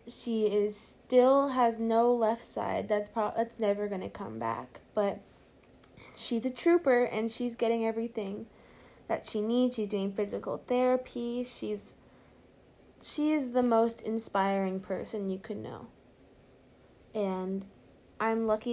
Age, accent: 20-39, American